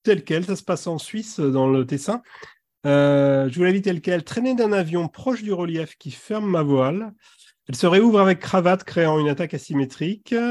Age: 40-59